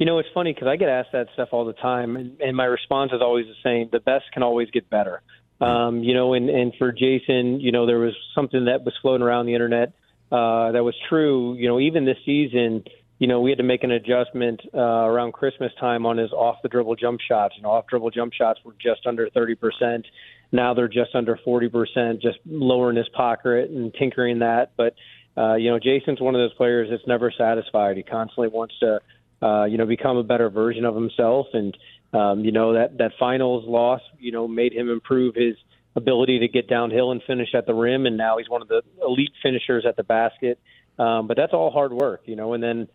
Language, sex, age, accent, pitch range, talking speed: English, male, 30-49, American, 115-125 Hz, 230 wpm